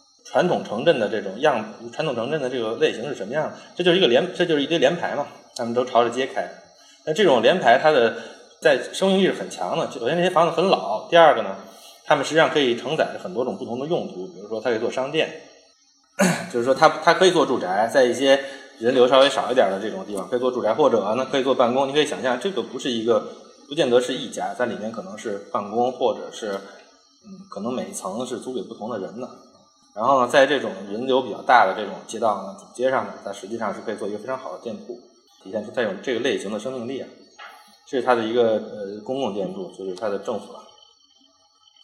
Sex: male